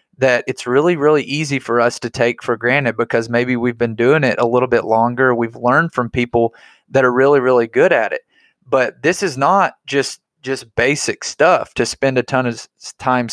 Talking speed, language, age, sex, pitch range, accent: 210 wpm, English, 20-39, male, 120-135 Hz, American